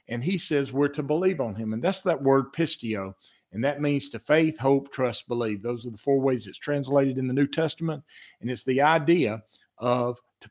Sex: male